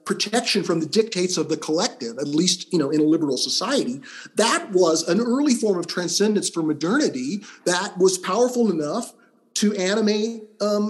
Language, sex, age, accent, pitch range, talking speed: English, male, 40-59, American, 170-225 Hz, 170 wpm